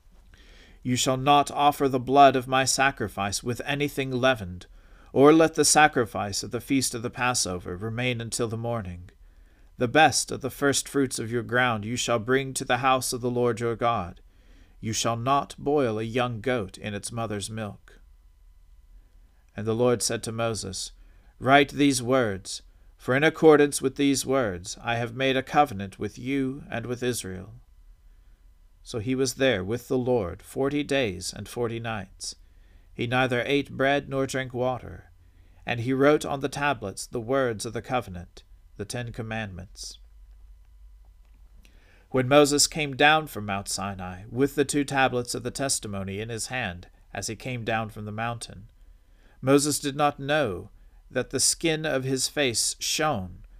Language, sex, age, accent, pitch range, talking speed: English, male, 40-59, American, 95-130 Hz, 165 wpm